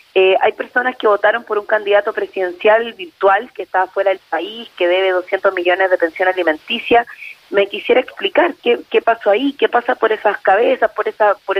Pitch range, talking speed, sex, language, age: 190-225 Hz, 190 wpm, female, Spanish, 30-49